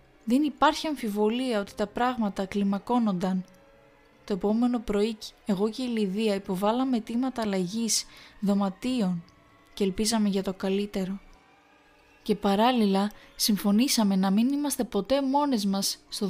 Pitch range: 205-250 Hz